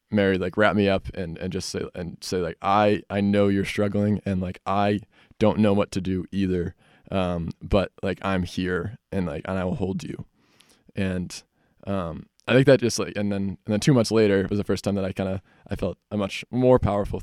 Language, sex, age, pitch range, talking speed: English, male, 20-39, 95-105 Hz, 235 wpm